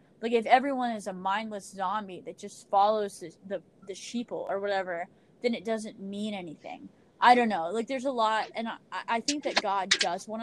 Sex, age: female, 10-29